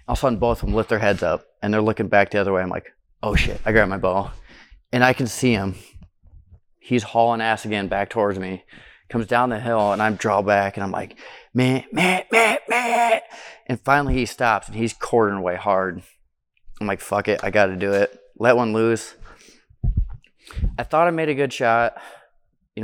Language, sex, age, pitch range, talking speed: English, male, 20-39, 95-125 Hz, 215 wpm